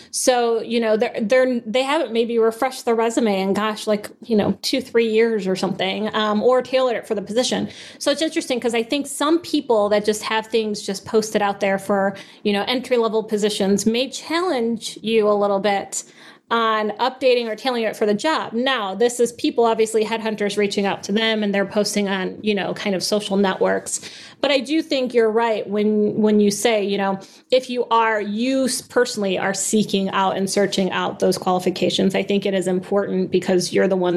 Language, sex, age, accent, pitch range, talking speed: English, female, 30-49, American, 200-255 Hz, 205 wpm